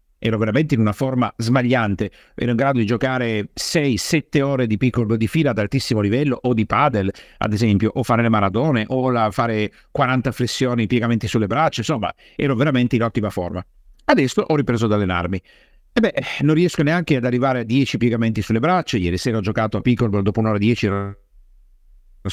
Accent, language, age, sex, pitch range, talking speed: native, Italian, 50-69, male, 110-150 Hz, 190 wpm